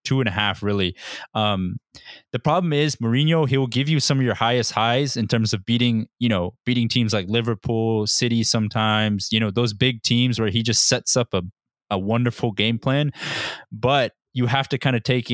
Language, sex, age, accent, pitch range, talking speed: English, male, 20-39, American, 105-125 Hz, 205 wpm